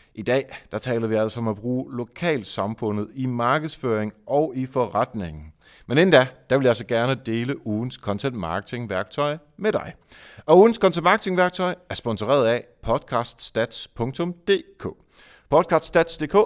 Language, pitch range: Danish, 110-155 Hz